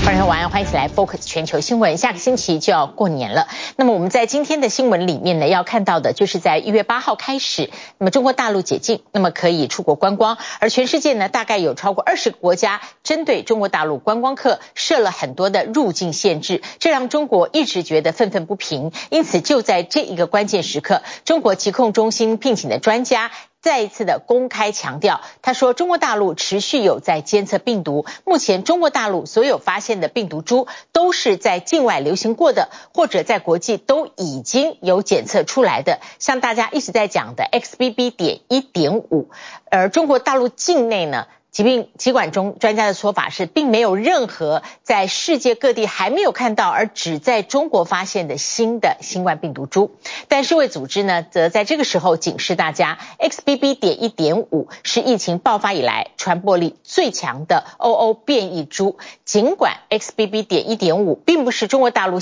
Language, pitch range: Chinese, 185-260 Hz